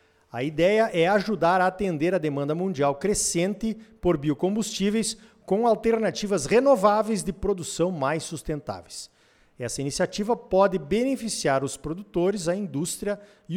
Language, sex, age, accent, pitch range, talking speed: Portuguese, male, 50-69, Brazilian, 165-220 Hz, 125 wpm